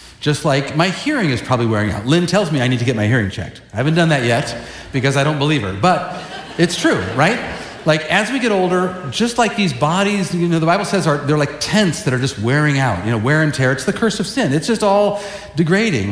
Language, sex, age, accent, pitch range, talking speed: English, male, 50-69, American, 135-190 Hz, 255 wpm